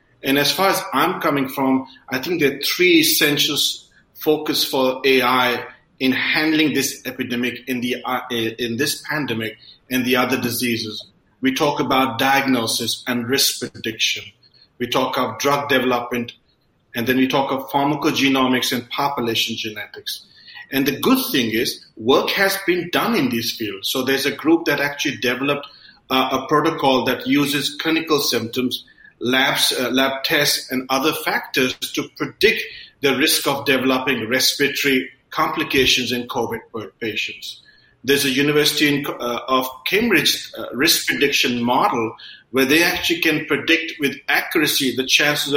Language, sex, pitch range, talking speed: English, male, 125-145 Hz, 145 wpm